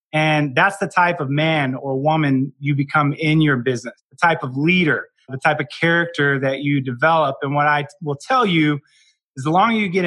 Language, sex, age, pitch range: English, male, 20-39, 135-155 Hz